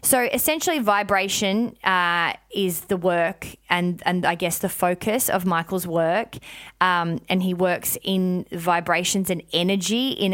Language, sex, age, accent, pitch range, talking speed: English, female, 20-39, Australian, 175-200 Hz, 145 wpm